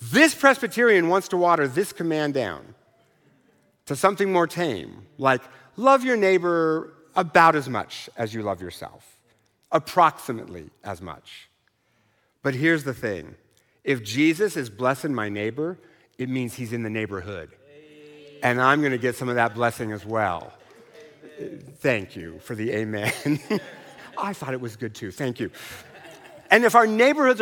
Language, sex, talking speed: English, male, 155 wpm